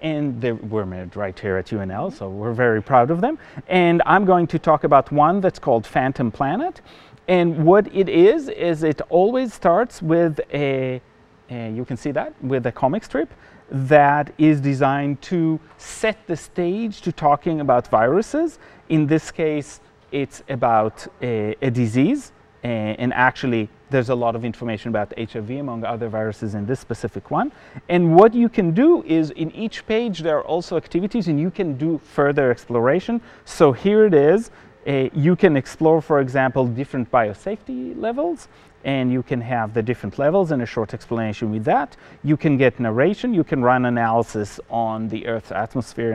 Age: 30-49